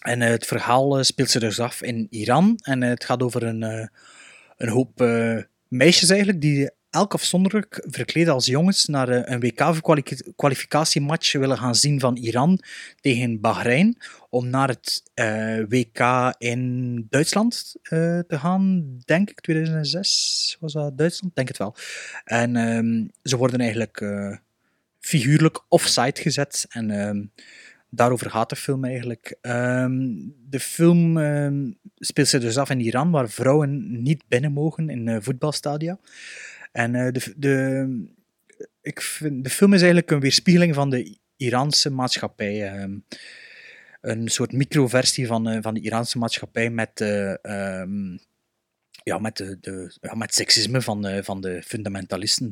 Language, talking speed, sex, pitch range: Dutch, 140 wpm, male, 115-155 Hz